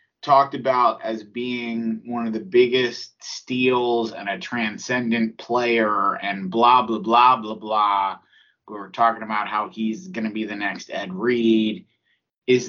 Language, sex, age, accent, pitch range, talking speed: English, male, 30-49, American, 110-140 Hz, 155 wpm